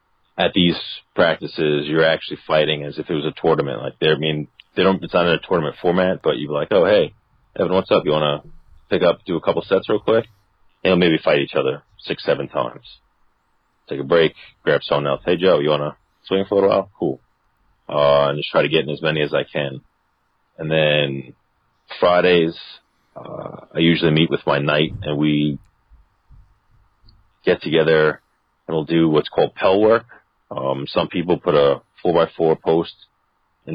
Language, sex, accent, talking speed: English, male, American, 195 wpm